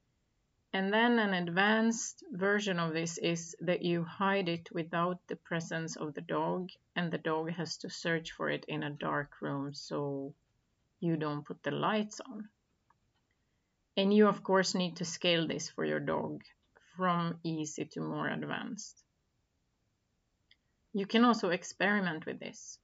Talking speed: 155 wpm